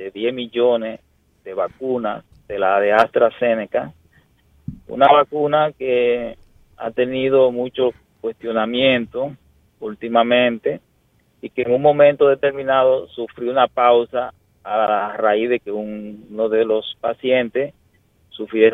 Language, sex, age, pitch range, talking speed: Spanish, male, 30-49, 115-155 Hz, 115 wpm